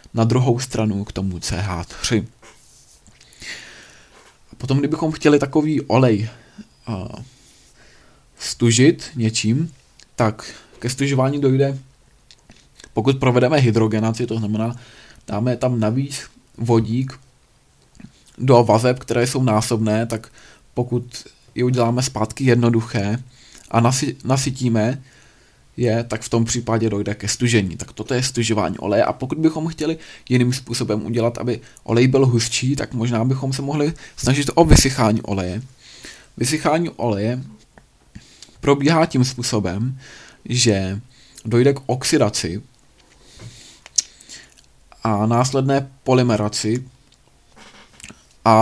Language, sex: Czech, male